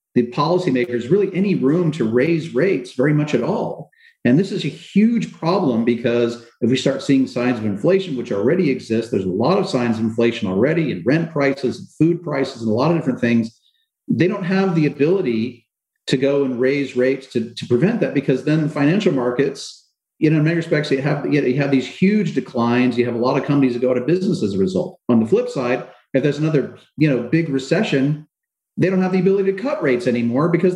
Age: 40-59